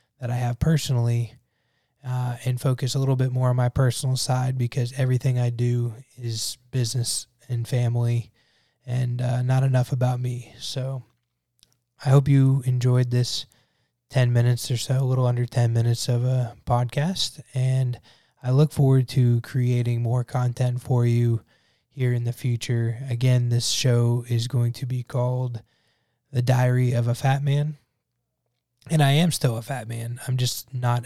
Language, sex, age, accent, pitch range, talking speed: English, male, 20-39, American, 120-130 Hz, 165 wpm